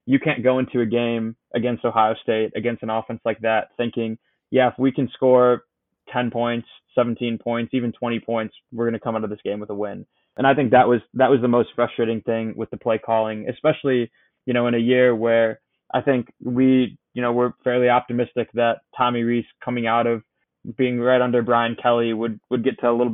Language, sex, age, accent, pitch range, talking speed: English, male, 20-39, American, 110-120 Hz, 220 wpm